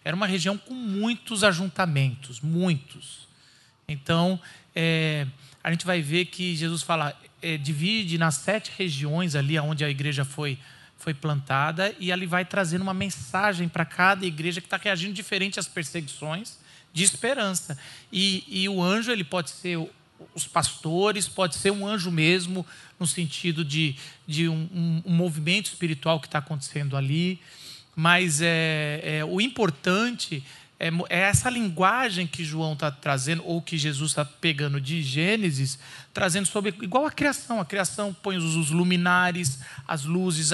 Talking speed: 150 wpm